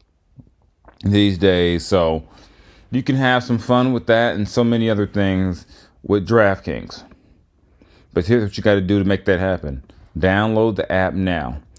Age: 30-49